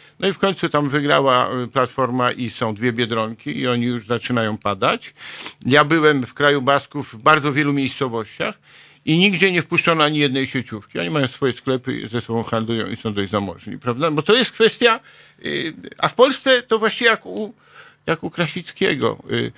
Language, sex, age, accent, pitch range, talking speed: Polish, male, 50-69, native, 125-160 Hz, 180 wpm